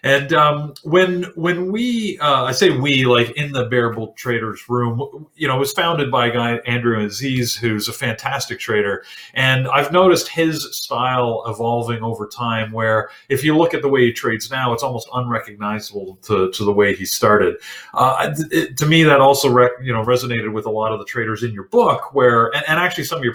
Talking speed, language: 210 wpm, English